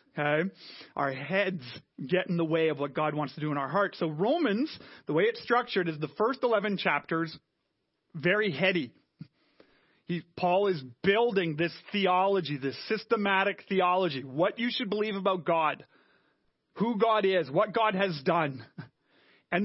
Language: English